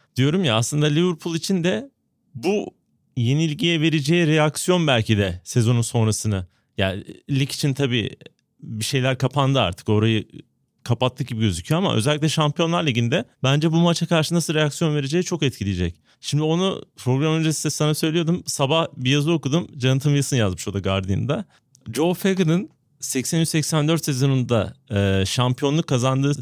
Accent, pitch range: native, 130-175 Hz